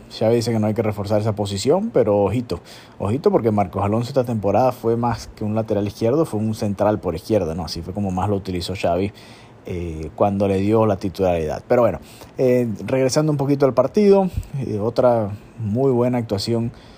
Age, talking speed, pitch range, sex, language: 30-49, 195 wpm, 95-115 Hz, male, Spanish